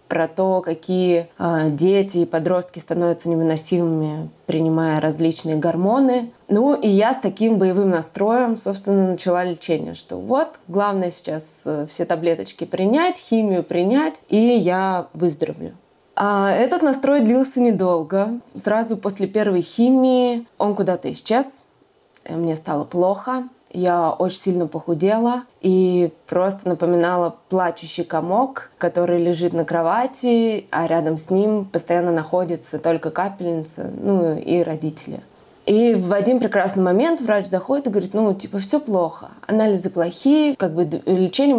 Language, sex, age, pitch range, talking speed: Russian, female, 20-39, 170-215 Hz, 130 wpm